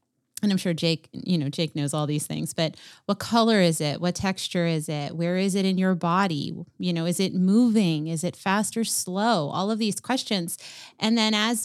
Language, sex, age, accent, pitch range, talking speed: English, female, 30-49, American, 170-210 Hz, 220 wpm